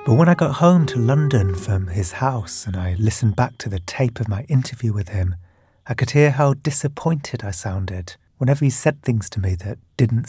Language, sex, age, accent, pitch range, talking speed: English, male, 40-59, British, 100-135 Hz, 215 wpm